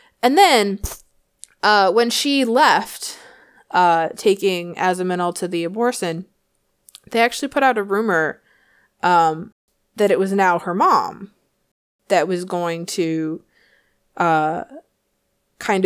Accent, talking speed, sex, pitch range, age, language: American, 115 wpm, female, 170-210 Hz, 20-39, English